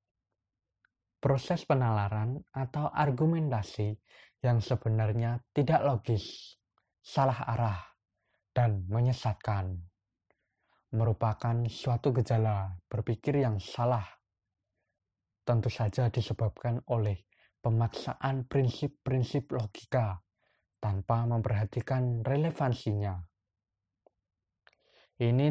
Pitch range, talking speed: 105-135 Hz, 70 wpm